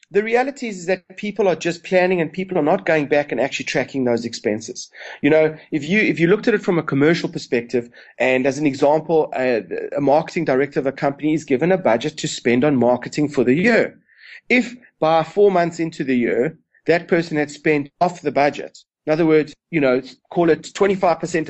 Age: 30-49